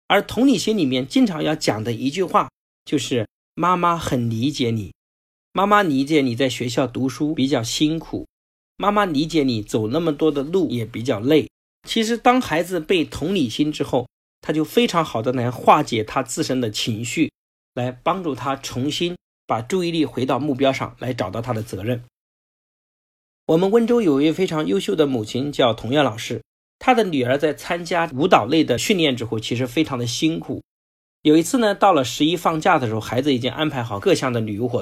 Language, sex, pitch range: Chinese, male, 125-160 Hz